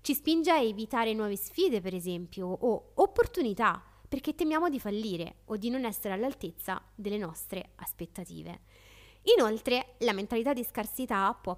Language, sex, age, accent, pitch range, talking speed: Italian, female, 20-39, native, 195-265 Hz, 145 wpm